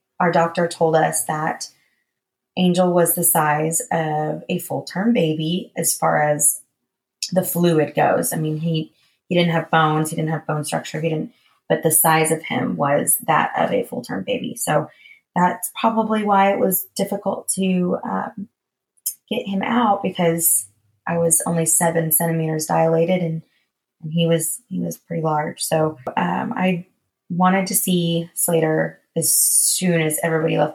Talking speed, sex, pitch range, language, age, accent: 160 wpm, female, 155-175 Hz, English, 20-39, American